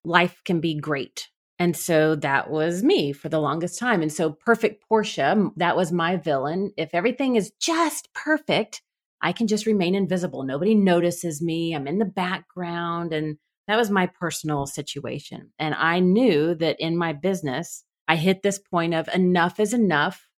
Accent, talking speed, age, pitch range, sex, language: American, 175 wpm, 30-49, 155-190 Hz, female, English